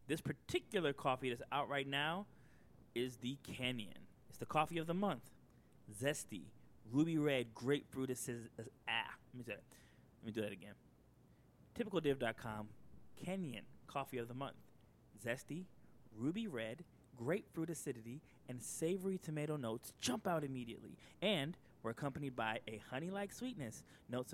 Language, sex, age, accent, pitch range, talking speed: English, male, 20-39, American, 115-150 Hz, 140 wpm